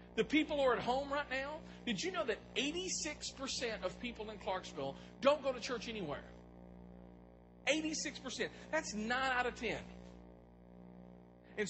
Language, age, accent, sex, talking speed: English, 40-59, American, male, 150 wpm